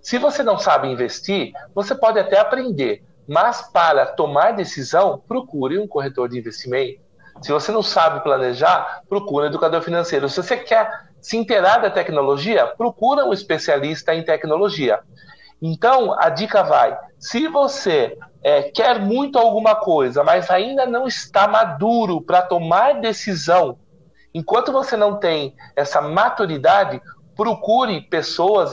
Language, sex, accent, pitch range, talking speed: Portuguese, male, Brazilian, 155-210 Hz, 140 wpm